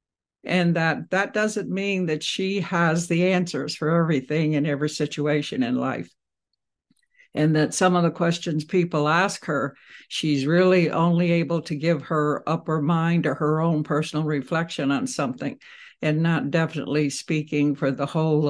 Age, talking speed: 60-79, 160 wpm